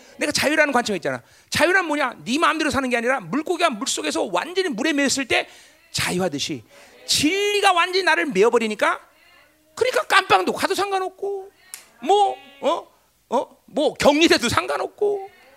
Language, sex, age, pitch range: Korean, male, 40-59, 275-455 Hz